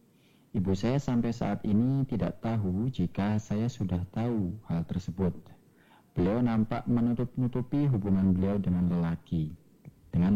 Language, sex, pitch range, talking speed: Indonesian, male, 90-115 Hz, 120 wpm